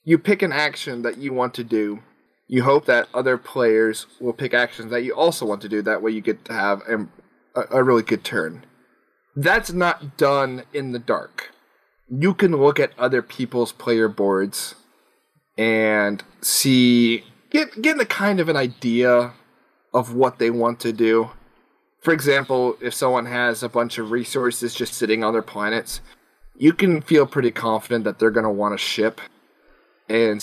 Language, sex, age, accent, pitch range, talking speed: English, male, 30-49, American, 110-130 Hz, 175 wpm